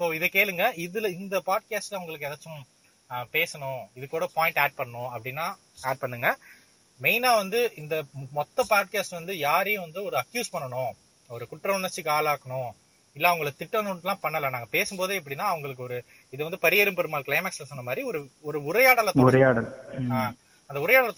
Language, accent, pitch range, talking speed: Tamil, native, 135-195 Hz, 30 wpm